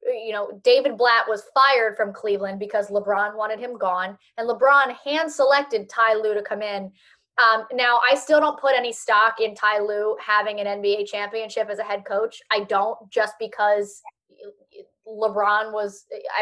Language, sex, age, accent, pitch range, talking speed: English, female, 10-29, American, 205-260 Hz, 170 wpm